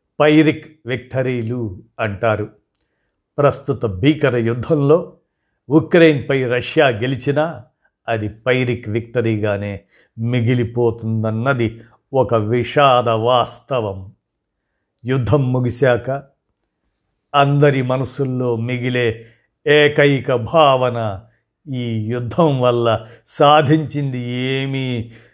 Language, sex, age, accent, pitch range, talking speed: Telugu, male, 50-69, native, 115-140 Hz, 65 wpm